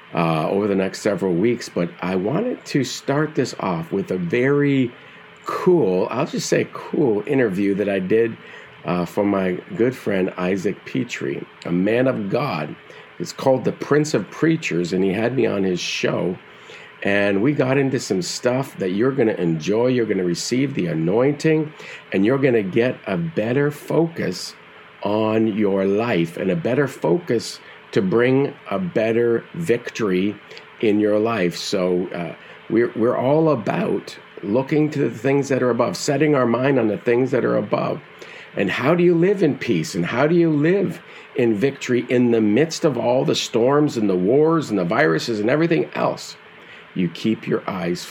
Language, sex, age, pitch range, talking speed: English, male, 50-69, 95-145 Hz, 180 wpm